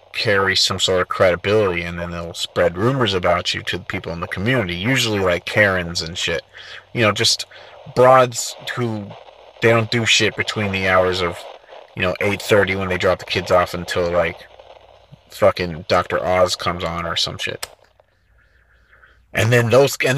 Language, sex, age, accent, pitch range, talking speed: English, male, 30-49, American, 95-125 Hz, 180 wpm